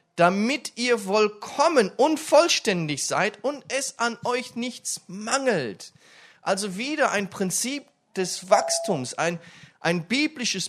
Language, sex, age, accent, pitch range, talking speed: German, male, 40-59, German, 160-225 Hz, 120 wpm